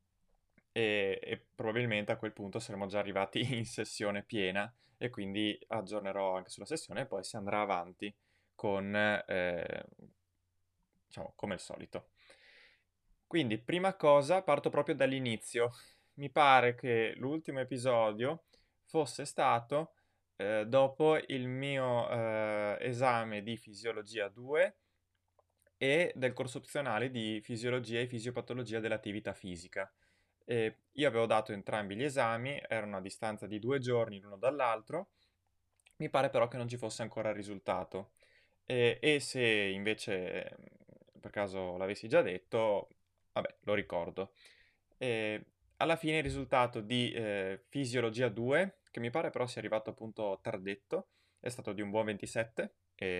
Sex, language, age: male, Italian, 20-39